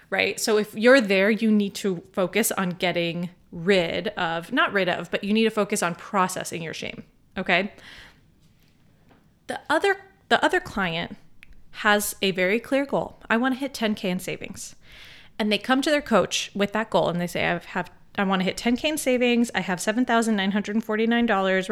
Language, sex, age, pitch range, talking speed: English, female, 30-49, 190-235 Hz, 180 wpm